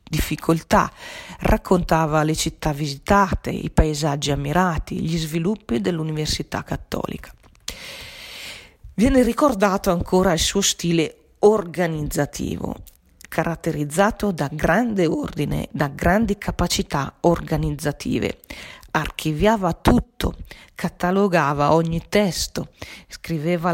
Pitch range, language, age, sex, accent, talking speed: 155-190 Hz, Italian, 40-59, female, native, 85 wpm